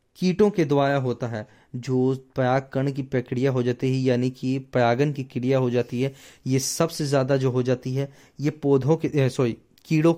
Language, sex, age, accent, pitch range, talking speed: Hindi, male, 20-39, native, 125-150 Hz, 190 wpm